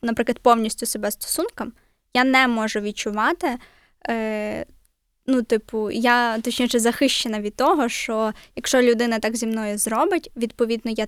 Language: Ukrainian